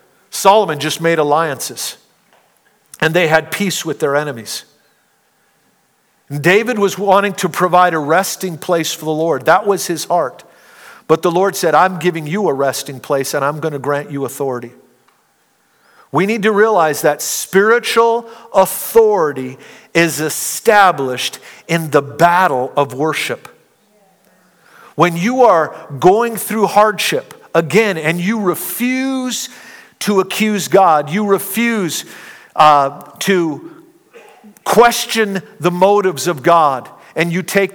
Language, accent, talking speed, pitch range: English, American, 130 wpm, 160-210 Hz